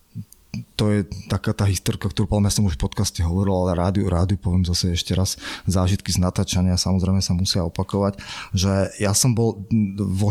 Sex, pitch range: male, 95-110 Hz